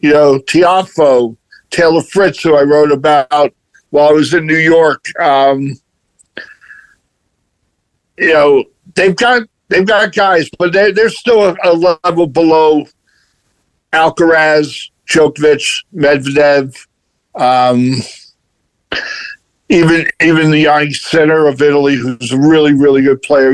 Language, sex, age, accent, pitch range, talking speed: English, male, 60-79, American, 140-175 Hz, 120 wpm